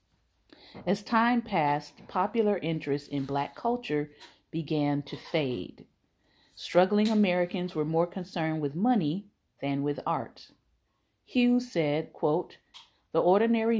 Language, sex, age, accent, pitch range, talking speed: English, female, 40-59, American, 145-185 Hz, 115 wpm